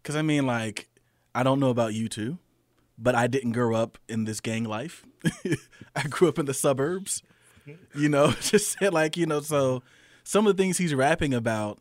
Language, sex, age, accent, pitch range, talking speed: English, male, 20-39, American, 120-155 Hz, 200 wpm